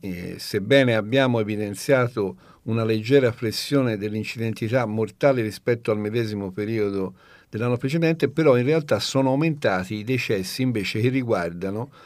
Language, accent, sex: Italian, native, male